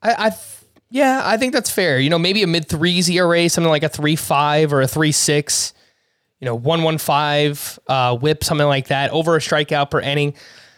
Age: 20-39